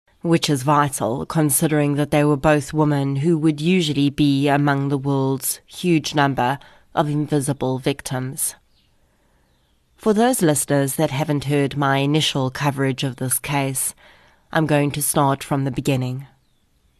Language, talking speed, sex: English, 140 wpm, female